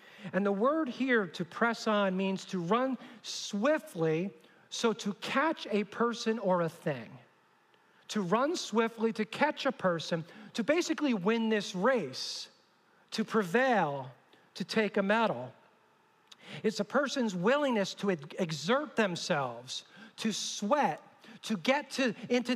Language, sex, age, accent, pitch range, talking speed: English, male, 40-59, American, 190-250 Hz, 135 wpm